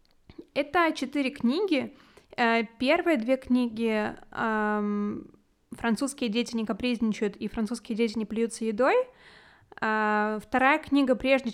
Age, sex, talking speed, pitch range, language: 20-39, female, 110 wpm, 215-270 Hz, Russian